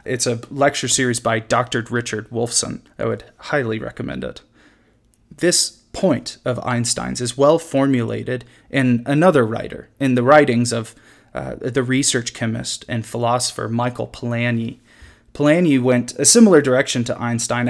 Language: English